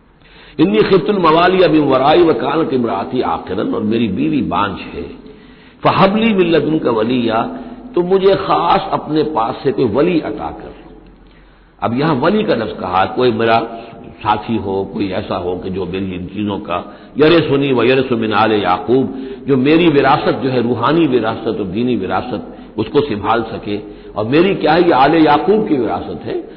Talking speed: 170 wpm